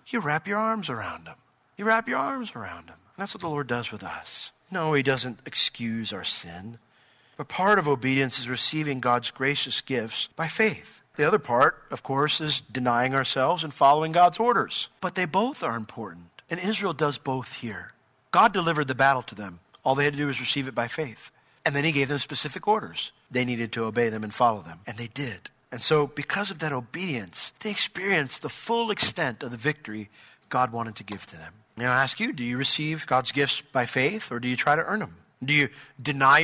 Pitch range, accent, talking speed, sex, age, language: 125-180 Hz, American, 220 wpm, male, 40-59, English